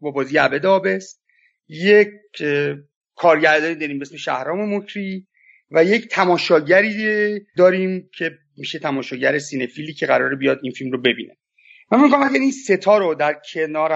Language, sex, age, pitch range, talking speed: Persian, male, 30-49, 145-190 Hz, 145 wpm